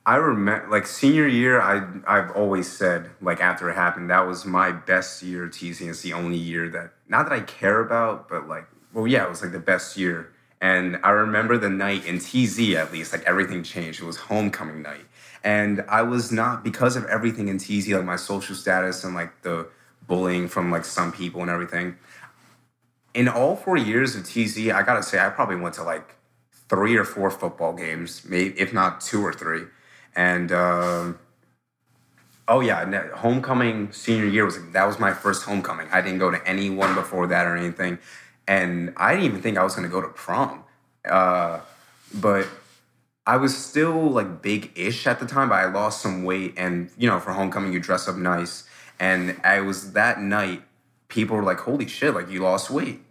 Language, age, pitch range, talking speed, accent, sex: English, 30-49, 90-110 Hz, 200 wpm, American, male